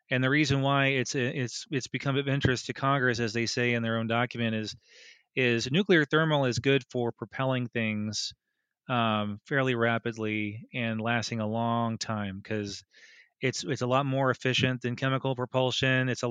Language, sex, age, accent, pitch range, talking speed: English, male, 30-49, American, 115-130 Hz, 175 wpm